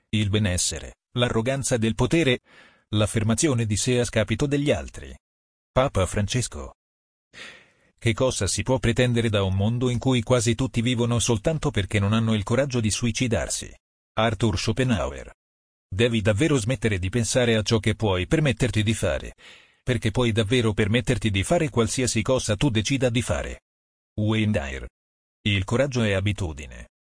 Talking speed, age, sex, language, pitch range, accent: 150 wpm, 40-59, male, Italian, 100-125 Hz, native